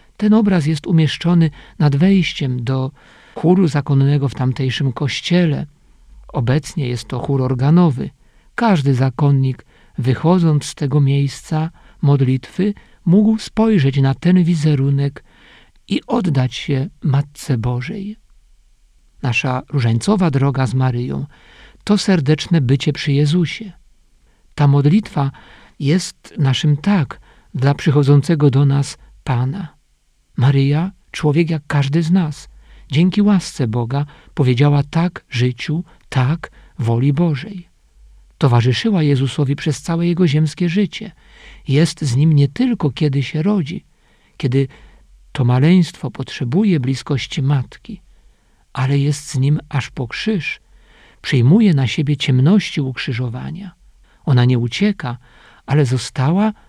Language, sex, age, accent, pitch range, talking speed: Polish, male, 50-69, native, 130-170 Hz, 115 wpm